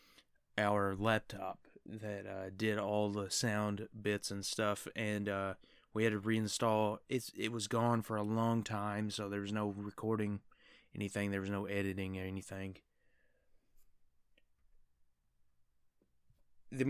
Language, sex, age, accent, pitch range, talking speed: English, male, 20-39, American, 100-115 Hz, 130 wpm